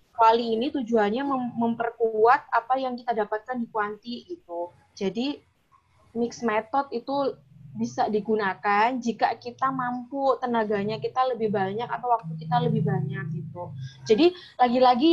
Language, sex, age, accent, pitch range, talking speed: Indonesian, female, 20-39, native, 225-275 Hz, 130 wpm